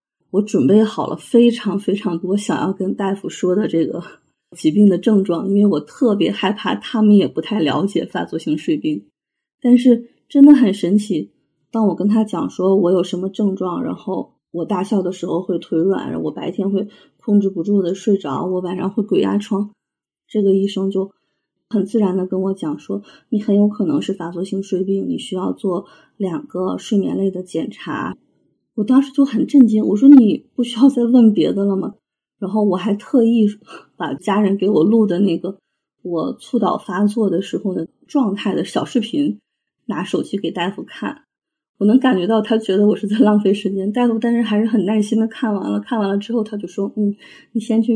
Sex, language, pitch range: female, Chinese, 195-230 Hz